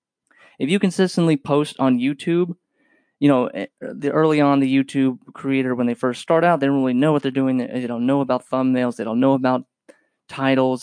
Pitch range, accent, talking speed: 125-160 Hz, American, 200 wpm